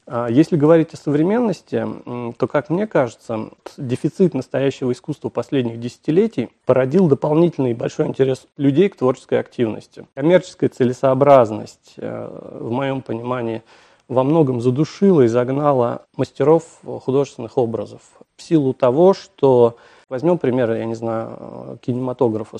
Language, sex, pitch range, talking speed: Russian, male, 115-145 Hz, 115 wpm